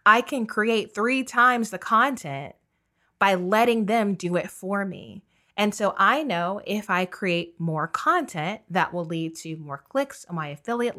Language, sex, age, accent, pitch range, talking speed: English, female, 20-39, American, 170-220 Hz, 175 wpm